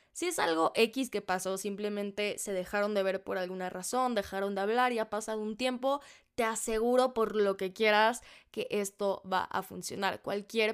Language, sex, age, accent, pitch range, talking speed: Spanish, female, 10-29, Mexican, 200-240 Hz, 190 wpm